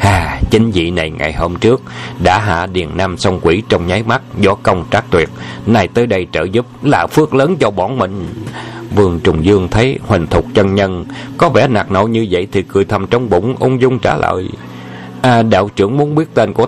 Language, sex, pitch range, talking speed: Vietnamese, male, 95-125 Hz, 225 wpm